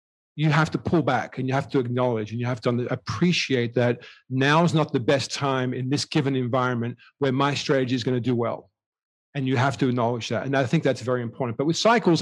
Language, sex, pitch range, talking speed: English, male, 120-140 Hz, 240 wpm